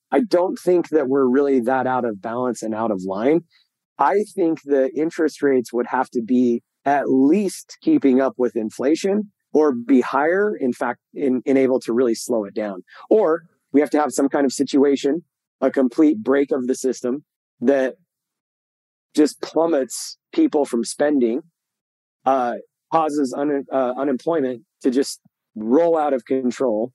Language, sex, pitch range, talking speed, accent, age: English, male, 125-150 Hz, 165 wpm, American, 30-49